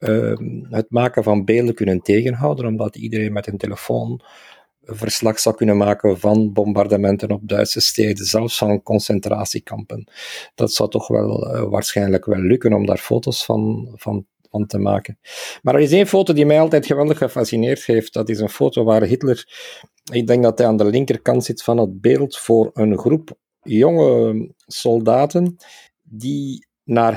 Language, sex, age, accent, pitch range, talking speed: Dutch, male, 50-69, Belgian, 105-140 Hz, 170 wpm